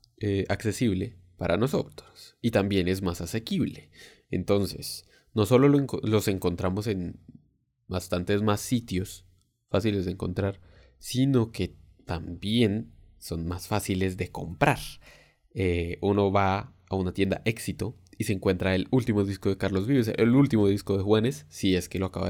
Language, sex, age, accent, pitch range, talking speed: Spanish, male, 20-39, Mexican, 95-110 Hz, 150 wpm